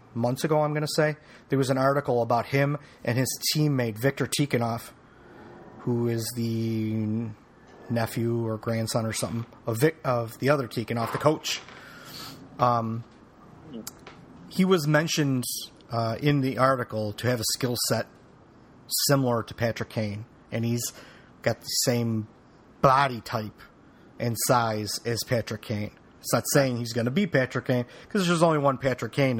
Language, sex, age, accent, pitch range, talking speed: English, male, 30-49, American, 115-135 Hz, 155 wpm